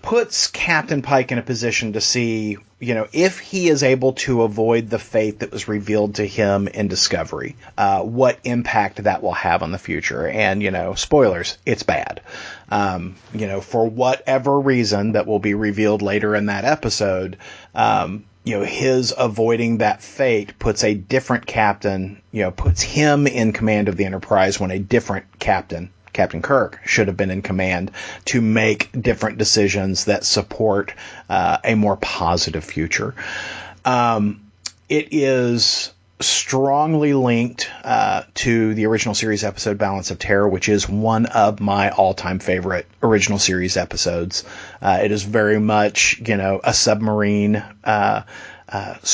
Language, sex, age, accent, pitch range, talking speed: English, male, 40-59, American, 100-120 Hz, 160 wpm